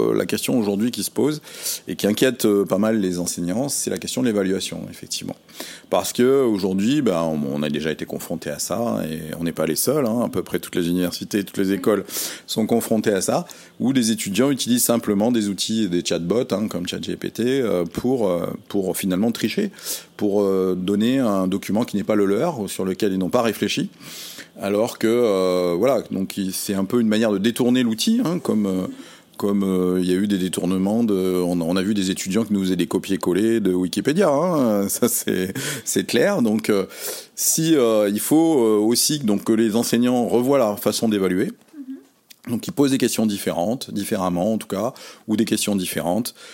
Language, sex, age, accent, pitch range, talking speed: French, male, 40-59, French, 95-115 Hz, 195 wpm